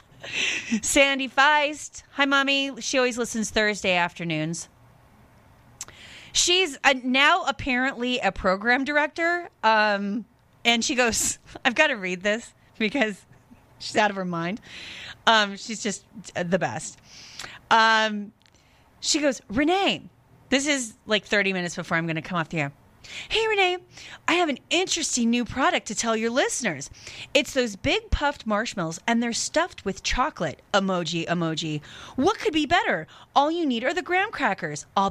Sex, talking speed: female, 150 wpm